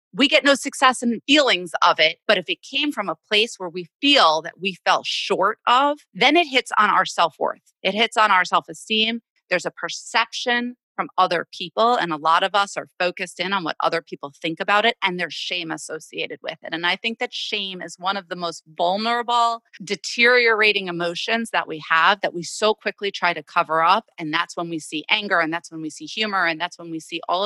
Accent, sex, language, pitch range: American, female, English, 175-235 Hz